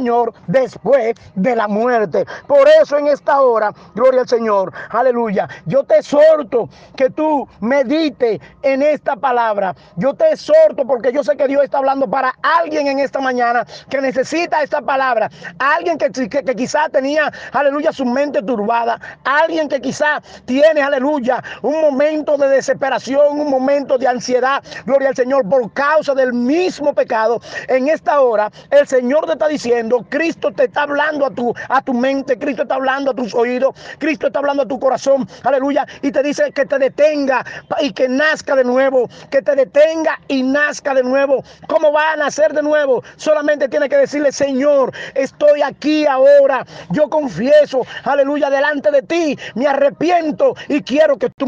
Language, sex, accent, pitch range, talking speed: Spanish, male, American, 255-295 Hz, 170 wpm